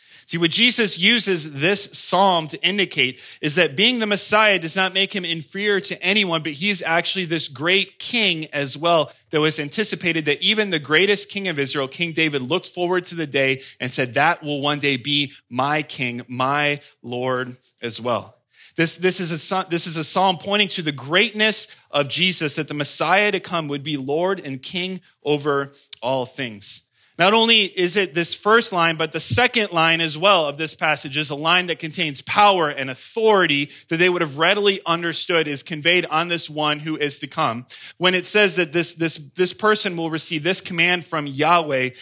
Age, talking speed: 20-39, 195 wpm